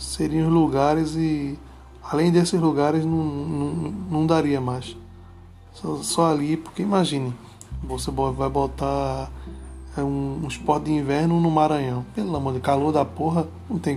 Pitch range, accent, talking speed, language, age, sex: 130-165 Hz, Brazilian, 155 wpm, Portuguese, 20-39, male